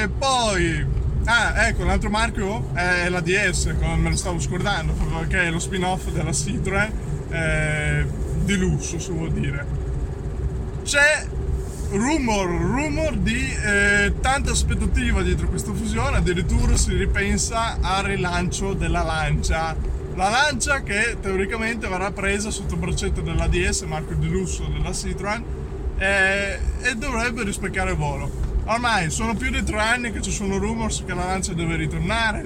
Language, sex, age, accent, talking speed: Italian, male, 20-39, native, 140 wpm